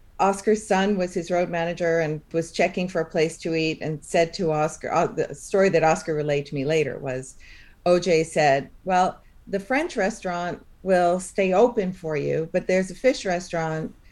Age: 50-69